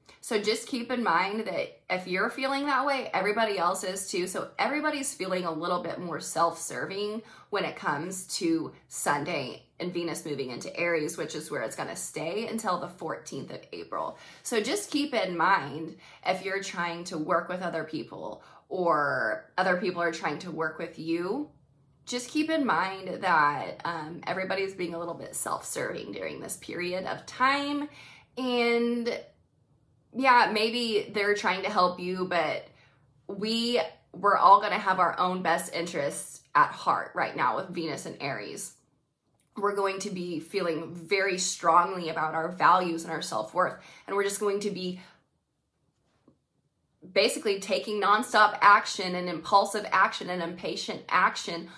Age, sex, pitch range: 20-39, female, 170-215 Hz